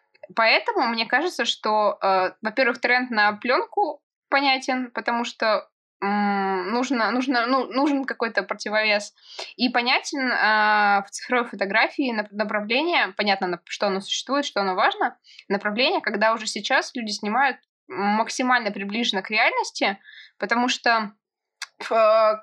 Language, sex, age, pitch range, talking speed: Russian, female, 20-39, 205-260 Hz, 125 wpm